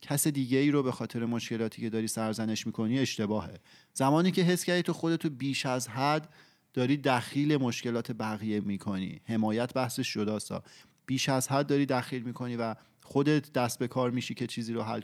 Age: 30-49